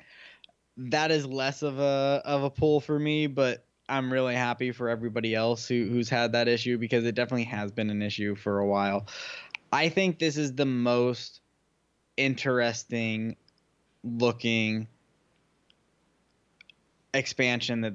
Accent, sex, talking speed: American, male, 140 wpm